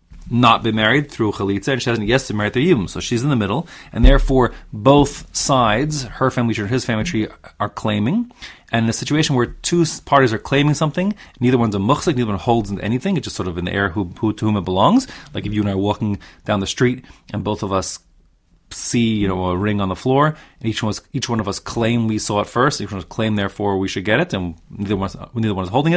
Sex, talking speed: male, 255 wpm